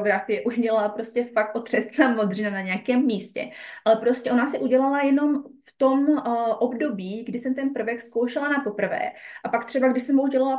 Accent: native